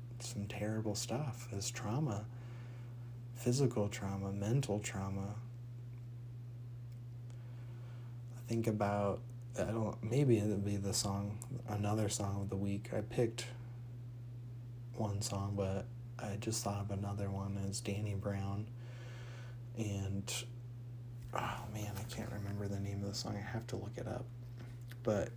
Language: English